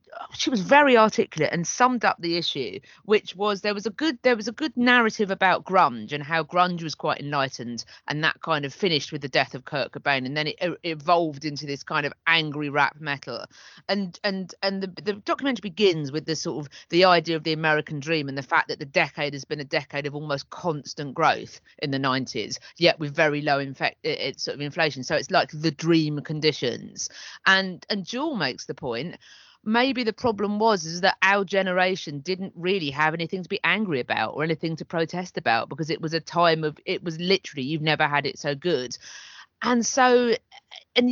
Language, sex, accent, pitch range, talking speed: English, female, British, 145-200 Hz, 210 wpm